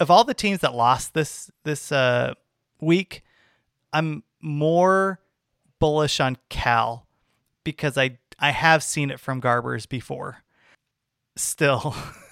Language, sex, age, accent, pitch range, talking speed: English, male, 30-49, American, 130-175 Hz, 120 wpm